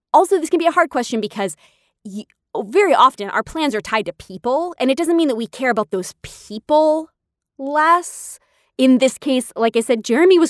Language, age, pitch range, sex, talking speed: English, 20-39, 195-270 Hz, female, 200 wpm